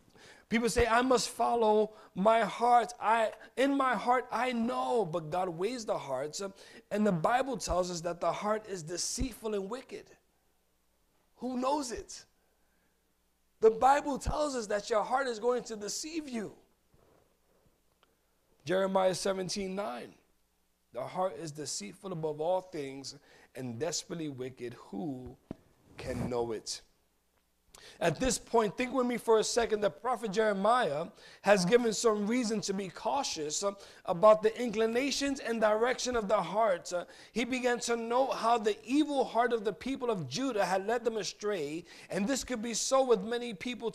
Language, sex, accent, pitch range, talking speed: English, male, American, 155-245 Hz, 155 wpm